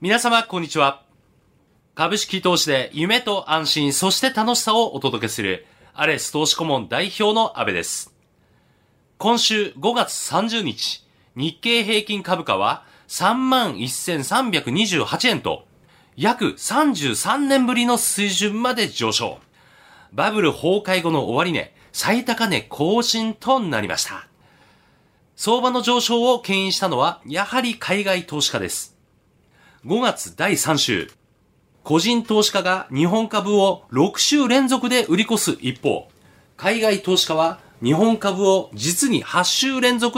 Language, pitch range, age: Japanese, 155-225 Hz, 40-59